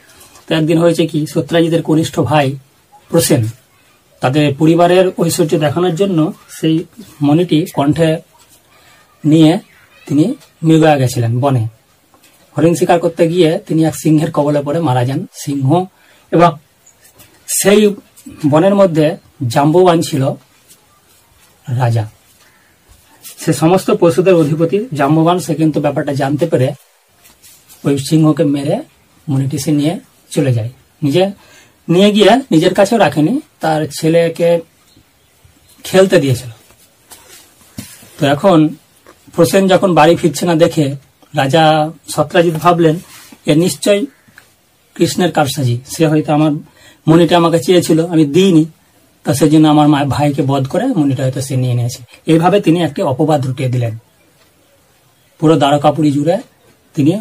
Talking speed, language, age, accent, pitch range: 110 wpm, Bengali, 40-59, native, 145-170 Hz